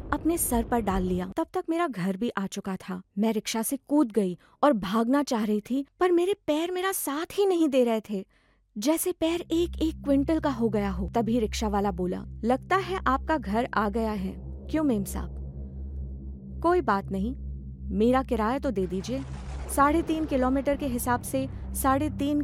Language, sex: Hindi, female